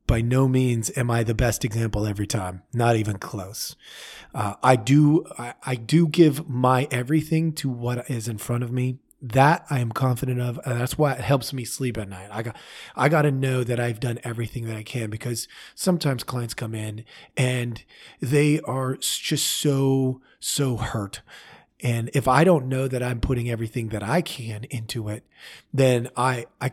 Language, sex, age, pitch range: English, male, 30-49, 115-135 Hz